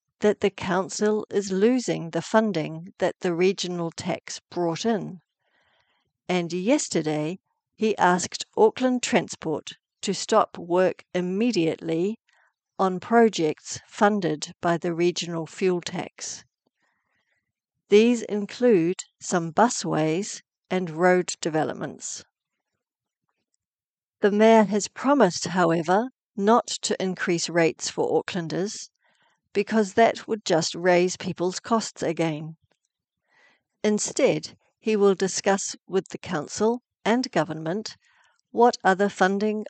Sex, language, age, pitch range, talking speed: female, English, 60-79, 170-215 Hz, 105 wpm